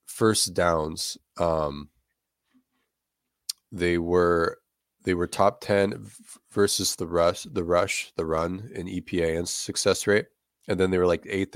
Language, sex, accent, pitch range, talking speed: English, male, American, 80-100 Hz, 145 wpm